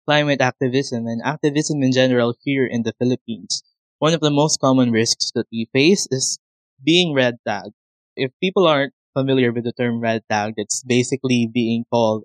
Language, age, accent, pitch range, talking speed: English, 20-39, Filipino, 120-150 Hz, 175 wpm